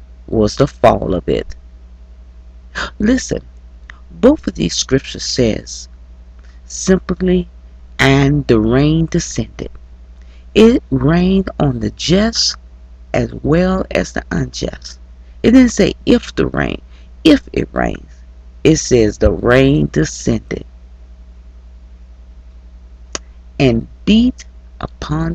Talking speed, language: 100 wpm, English